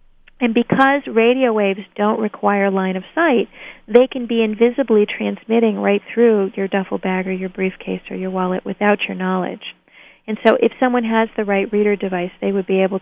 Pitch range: 185-215 Hz